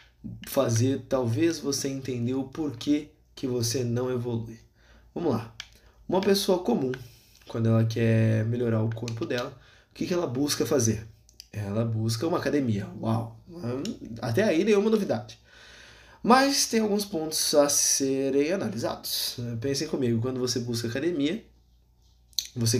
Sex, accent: male, Brazilian